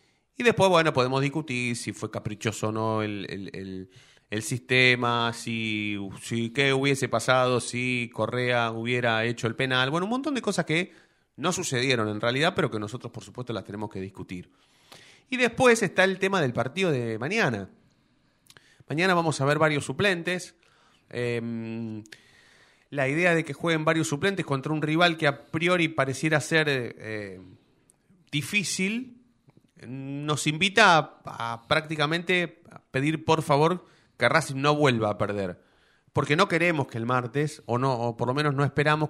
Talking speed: 160 wpm